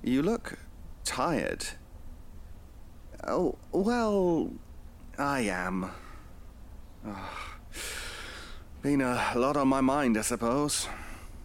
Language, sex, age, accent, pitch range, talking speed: English, male, 30-49, British, 85-125 Hz, 80 wpm